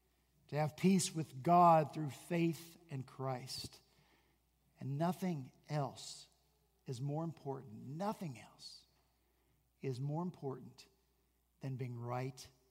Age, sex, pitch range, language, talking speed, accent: 50-69, male, 135-205 Hz, English, 110 wpm, American